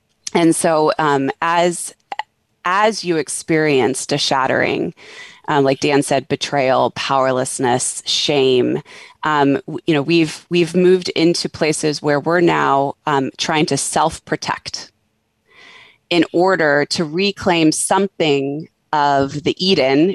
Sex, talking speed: female, 115 wpm